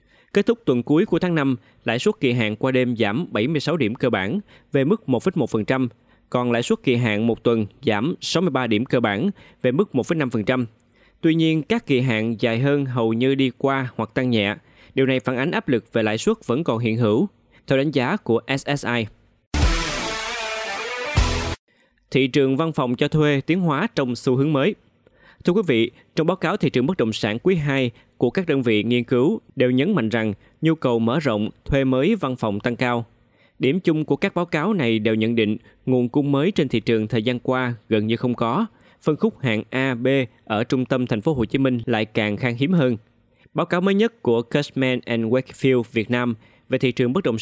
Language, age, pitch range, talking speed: Vietnamese, 20-39, 115-145 Hz, 215 wpm